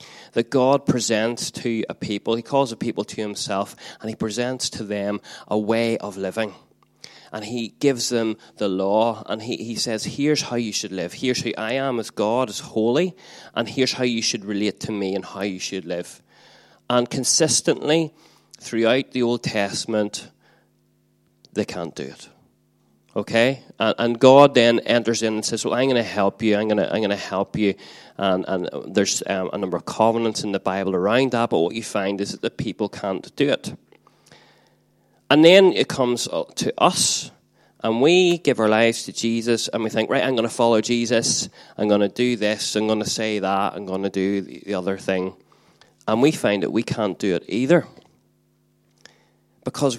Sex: male